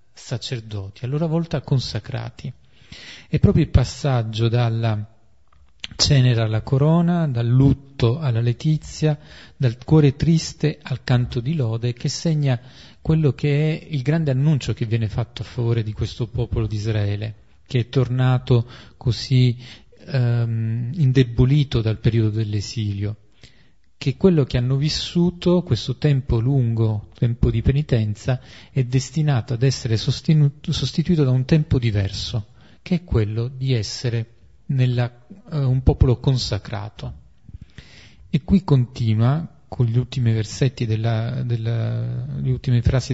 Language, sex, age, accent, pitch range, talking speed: Italian, male, 40-59, native, 115-145 Hz, 130 wpm